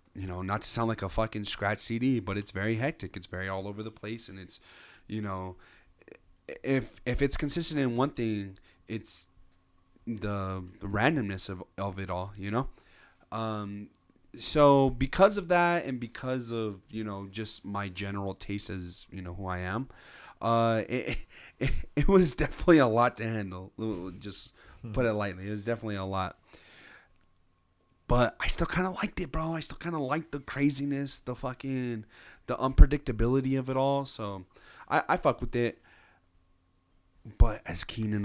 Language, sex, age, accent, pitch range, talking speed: English, male, 30-49, American, 95-140 Hz, 175 wpm